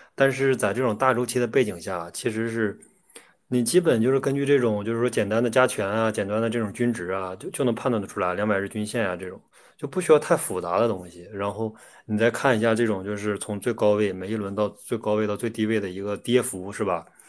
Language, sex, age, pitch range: Chinese, male, 20-39, 105-130 Hz